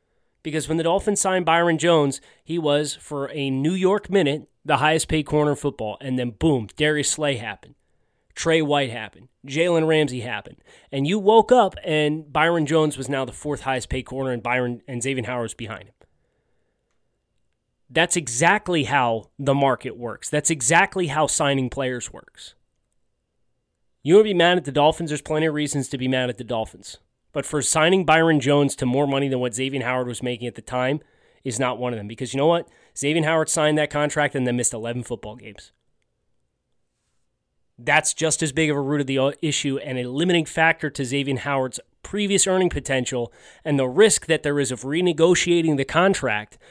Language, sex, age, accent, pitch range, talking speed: English, male, 30-49, American, 125-160 Hz, 190 wpm